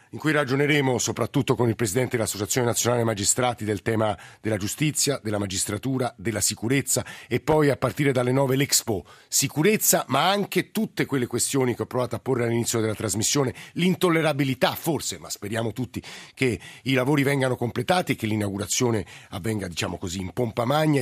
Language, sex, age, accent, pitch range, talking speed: Italian, male, 50-69, native, 115-145 Hz, 165 wpm